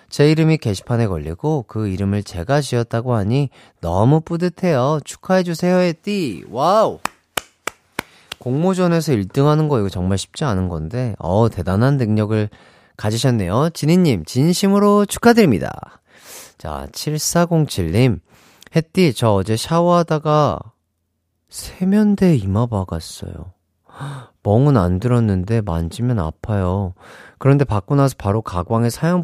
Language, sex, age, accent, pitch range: Korean, male, 30-49, native, 105-160 Hz